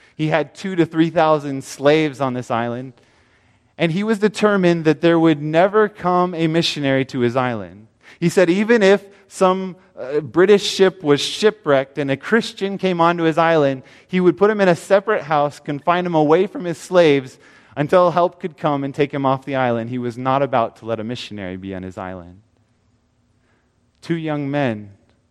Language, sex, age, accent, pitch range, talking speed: English, male, 30-49, American, 125-170 Hz, 185 wpm